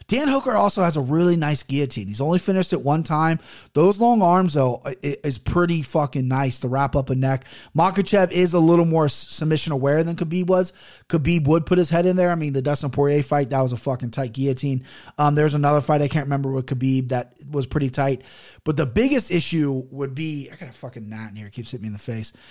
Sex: male